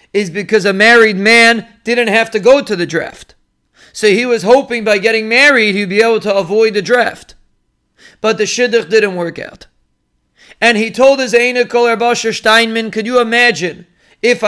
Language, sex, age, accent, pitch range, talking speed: English, male, 40-59, American, 205-230 Hz, 180 wpm